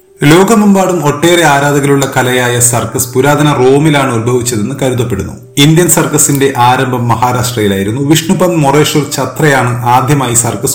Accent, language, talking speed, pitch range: native, Malayalam, 100 wpm, 115-145 Hz